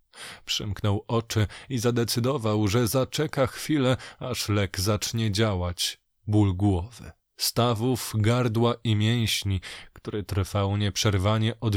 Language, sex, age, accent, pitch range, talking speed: Polish, male, 20-39, native, 100-120 Hz, 105 wpm